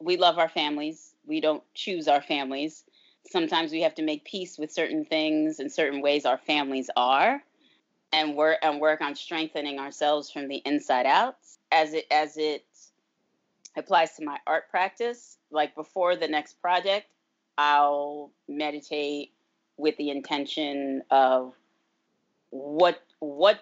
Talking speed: 145 wpm